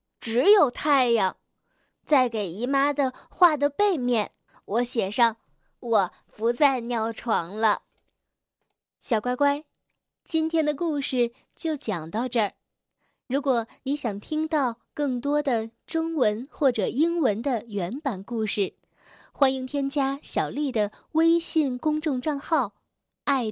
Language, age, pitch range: Chinese, 10-29, 215-295 Hz